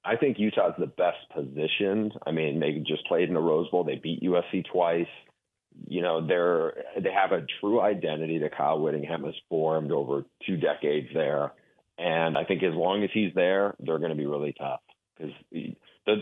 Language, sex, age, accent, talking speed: English, male, 40-59, American, 190 wpm